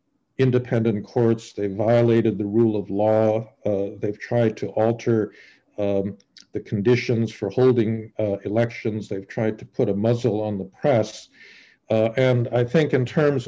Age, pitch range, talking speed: 50-69, 105-120 Hz, 155 wpm